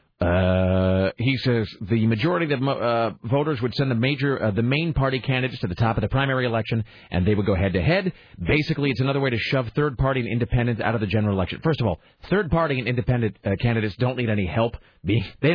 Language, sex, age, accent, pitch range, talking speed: English, male, 40-59, American, 105-140 Hz, 235 wpm